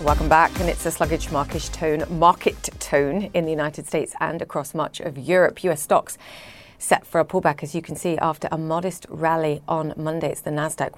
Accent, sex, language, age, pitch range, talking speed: British, female, English, 30-49, 155-195 Hz, 200 wpm